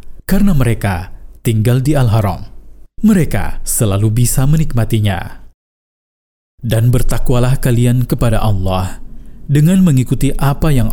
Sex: male